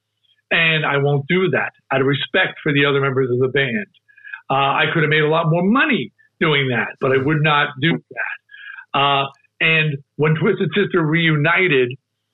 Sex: male